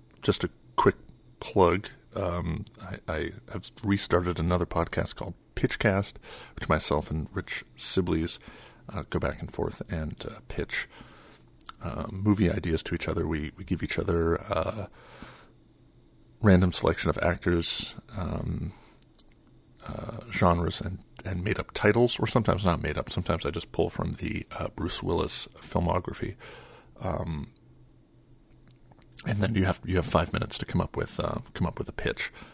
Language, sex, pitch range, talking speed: English, male, 85-105 Hz, 155 wpm